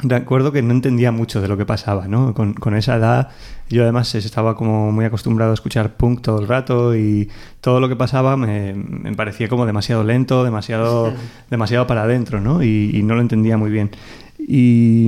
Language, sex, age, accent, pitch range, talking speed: Spanish, male, 20-39, Spanish, 105-125 Hz, 205 wpm